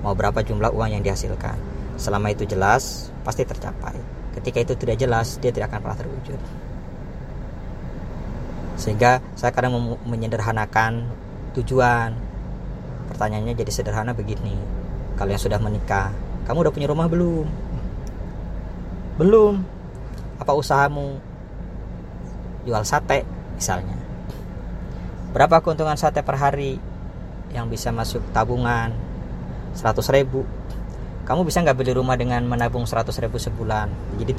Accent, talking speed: native, 115 wpm